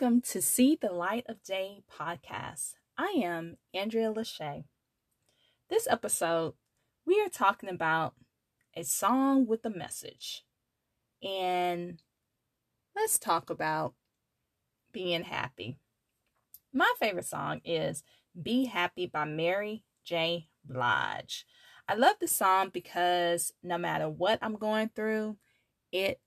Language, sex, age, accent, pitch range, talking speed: English, female, 20-39, American, 155-225 Hz, 115 wpm